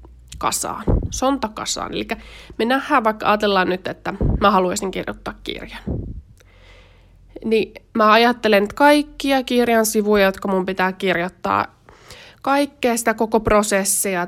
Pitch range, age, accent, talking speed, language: 185-235 Hz, 20-39, native, 120 wpm, Finnish